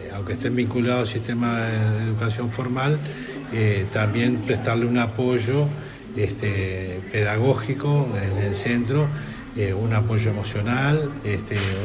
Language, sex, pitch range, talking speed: Spanish, male, 105-125 Hz, 110 wpm